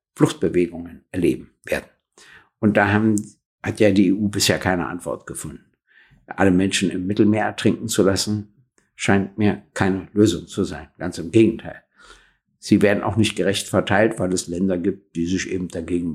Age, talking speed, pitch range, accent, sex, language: 60-79, 165 wpm, 100-120 Hz, German, male, German